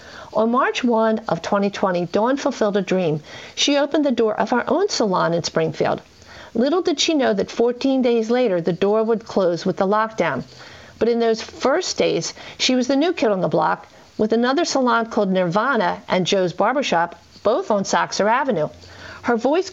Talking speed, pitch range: 185 wpm, 185-245 Hz